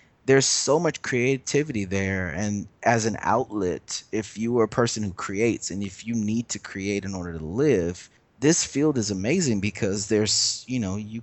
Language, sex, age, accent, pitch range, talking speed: English, male, 20-39, American, 95-110 Hz, 185 wpm